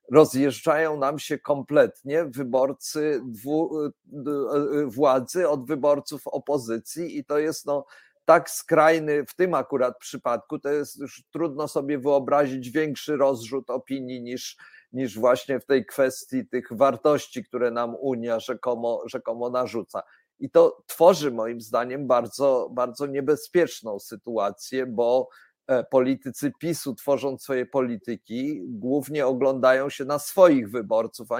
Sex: male